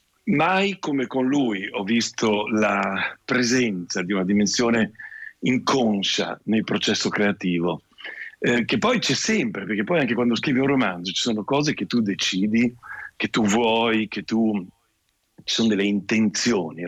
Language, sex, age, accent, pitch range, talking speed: Italian, male, 50-69, native, 105-130 Hz, 150 wpm